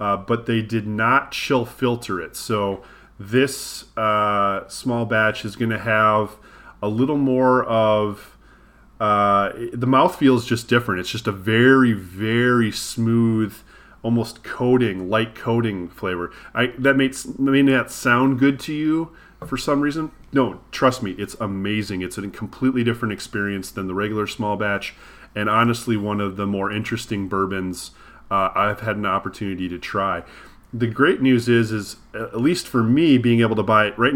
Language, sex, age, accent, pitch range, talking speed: English, male, 30-49, American, 100-120 Hz, 165 wpm